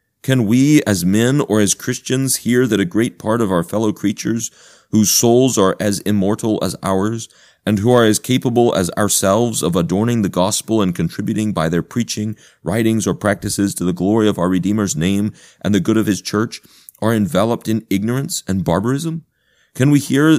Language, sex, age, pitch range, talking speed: English, male, 30-49, 95-120 Hz, 190 wpm